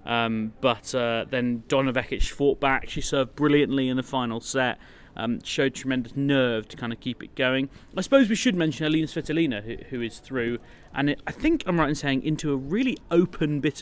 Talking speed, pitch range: 210 wpm, 120-165 Hz